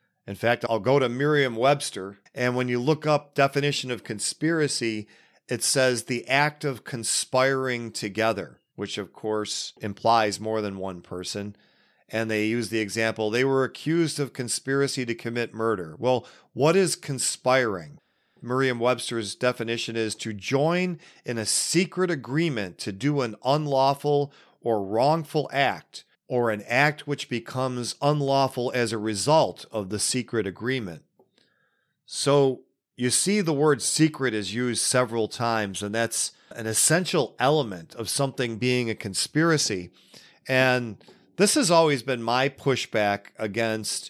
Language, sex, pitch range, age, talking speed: English, male, 110-140 Hz, 40-59, 140 wpm